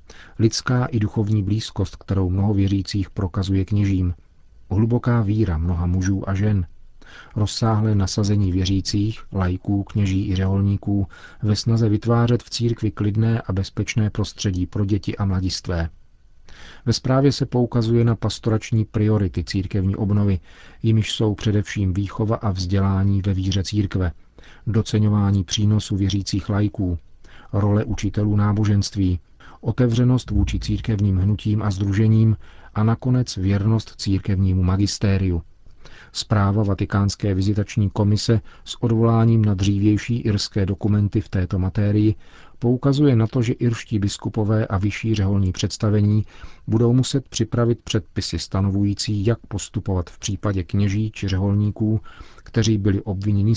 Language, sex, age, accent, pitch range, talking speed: Czech, male, 40-59, native, 95-110 Hz, 120 wpm